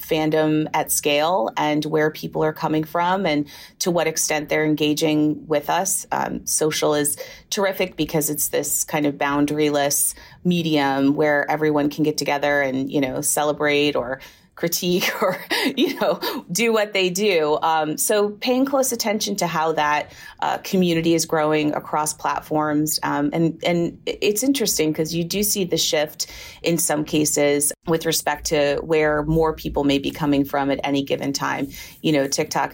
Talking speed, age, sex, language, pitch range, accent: 165 wpm, 30-49, female, English, 145-170 Hz, American